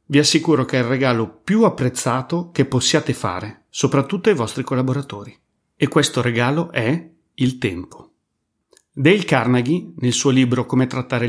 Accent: native